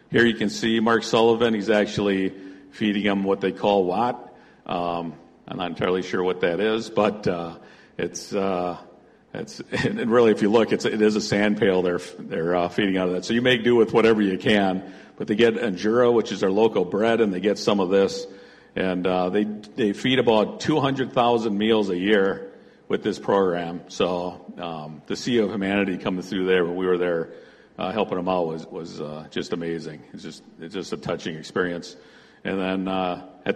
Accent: American